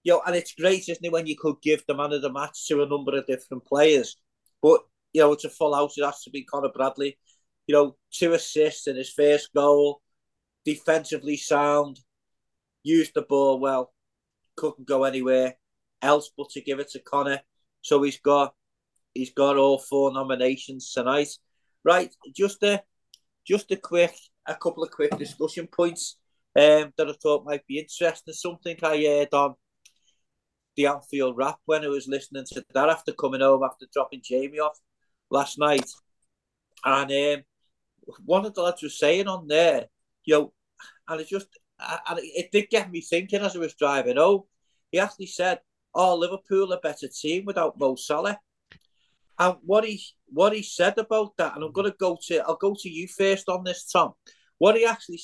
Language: English